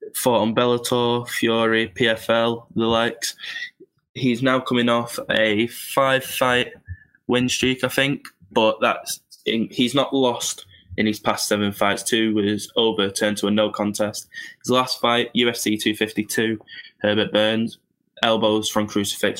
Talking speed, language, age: 145 wpm, English, 10-29